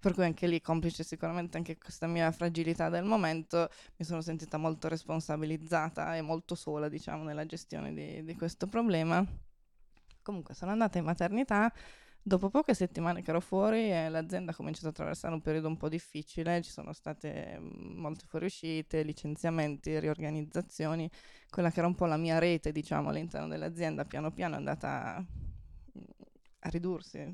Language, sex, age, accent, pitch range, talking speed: Italian, female, 20-39, native, 160-185 Hz, 165 wpm